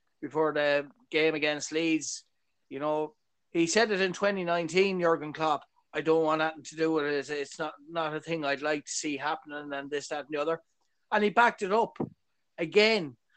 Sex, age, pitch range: male, 30-49, 155-190 Hz